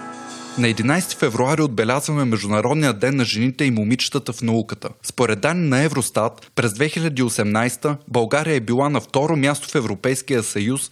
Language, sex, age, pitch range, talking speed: Bulgarian, male, 20-39, 115-150 Hz, 150 wpm